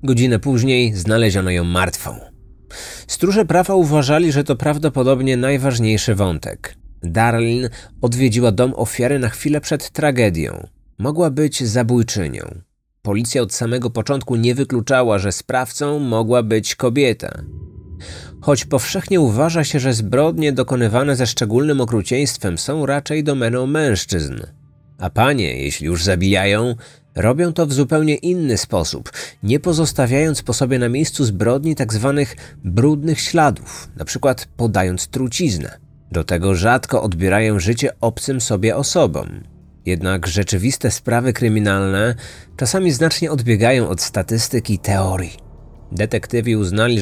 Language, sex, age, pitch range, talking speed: Polish, male, 30-49, 105-145 Hz, 120 wpm